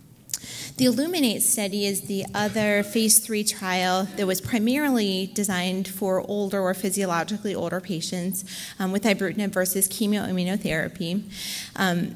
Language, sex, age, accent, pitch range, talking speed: English, female, 30-49, American, 185-215 Hz, 125 wpm